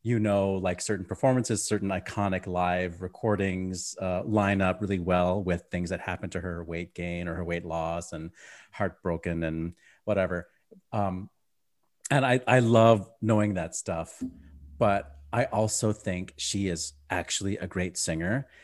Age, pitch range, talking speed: 30-49, 90-110 Hz, 155 wpm